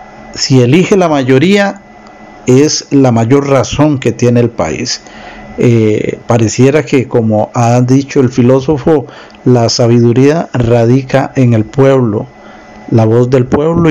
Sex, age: male, 50-69